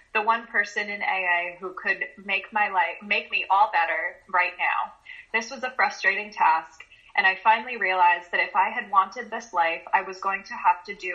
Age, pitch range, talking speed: 20-39, 170-205 Hz, 210 wpm